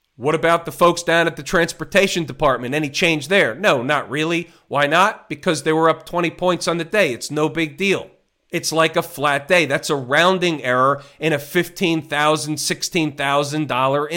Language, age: English, 40-59